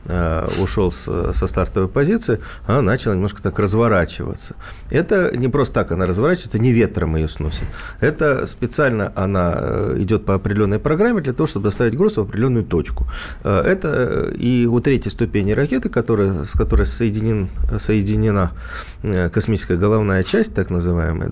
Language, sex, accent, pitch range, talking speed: Russian, male, native, 90-120 Hz, 140 wpm